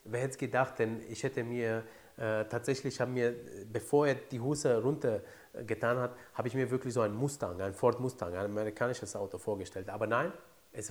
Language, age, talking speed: German, 30-49, 185 wpm